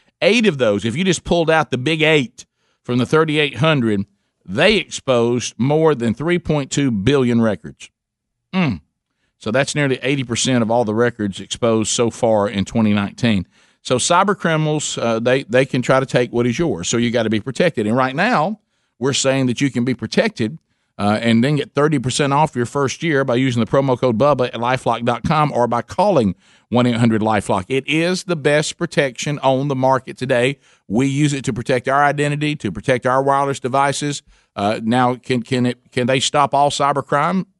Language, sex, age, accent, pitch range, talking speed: English, male, 50-69, American, 120-145 Hz, 180 wpm